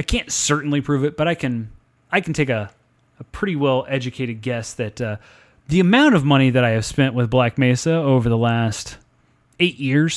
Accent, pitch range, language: American, 120-150 Hz, English